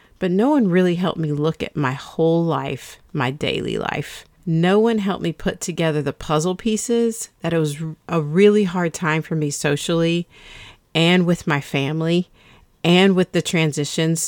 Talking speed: 170 wpm